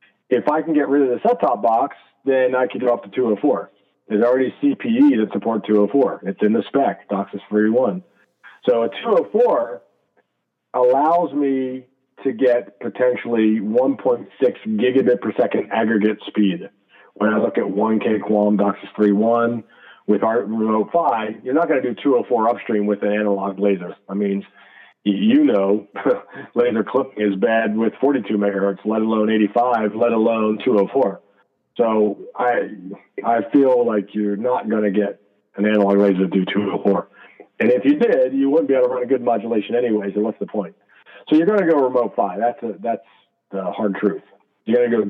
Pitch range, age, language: 100-120 Hz, 40-59, English